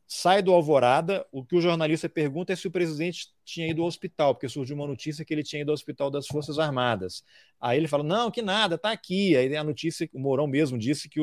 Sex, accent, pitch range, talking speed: male, Brazilian, 140-180 Hz, 240 wpm